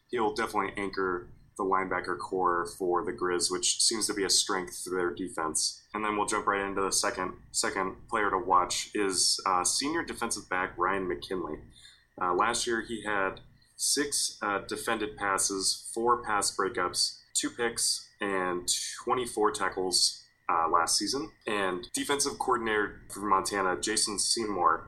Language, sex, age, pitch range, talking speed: English, male, 20-39, 90-115 Hz, 155 wpm